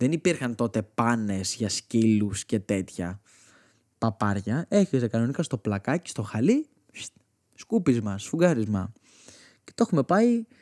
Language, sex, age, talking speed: Greek, male, 20-39, 125 wpm